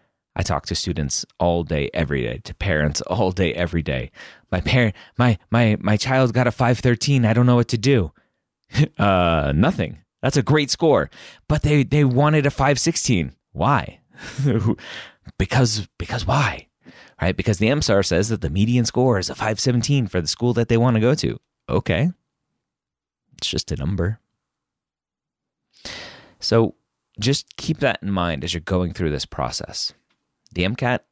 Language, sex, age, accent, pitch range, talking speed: English, male, 30-49, American, 75-115 Hz, 160 wpm